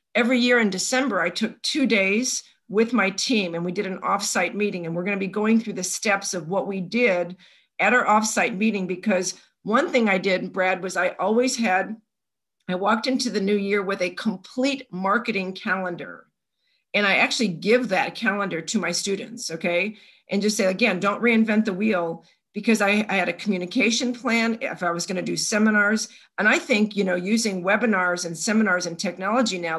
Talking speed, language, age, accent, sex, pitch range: 195 wpm, English, 50-69, American, female, 185-230 Hz